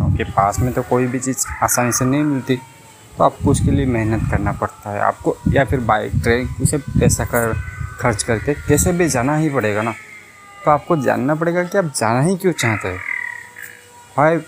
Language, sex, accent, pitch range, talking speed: Hindi, male, native, 110-140 Hz, 195 wpm